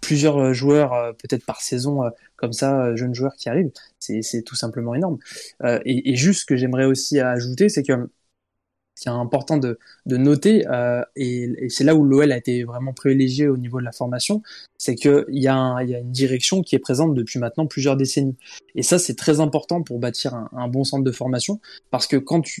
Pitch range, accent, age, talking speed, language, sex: 125-150 Hz, French, 20-39, 210 wpm, French, male